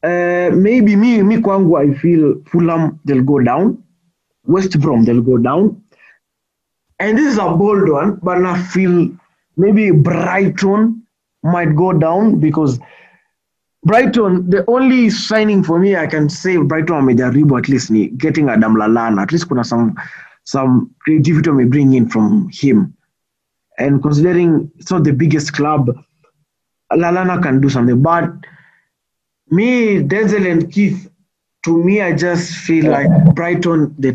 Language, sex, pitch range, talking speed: Swahili, male, 150-205 Hz, 140 wpm